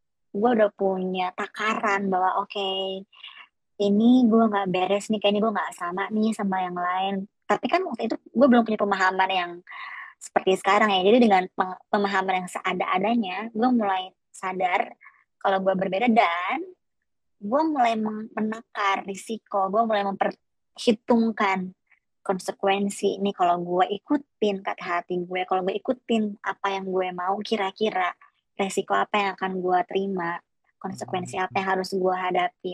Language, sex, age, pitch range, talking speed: Indonesian, male, 20-39, 185-215 Hz, 145 wpm